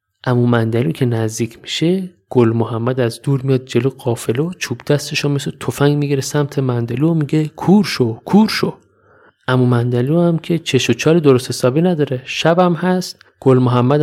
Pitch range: 120-170 Hz